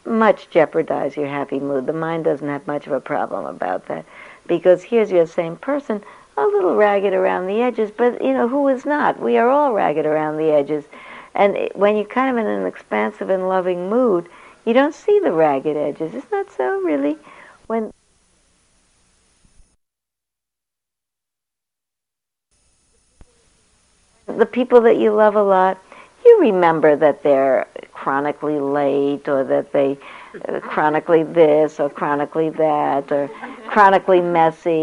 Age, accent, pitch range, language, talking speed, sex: 60-79, American, 150-225 Hz, English, 150 wpm, female